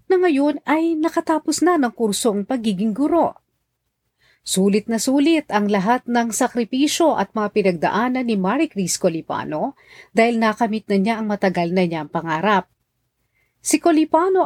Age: 40-59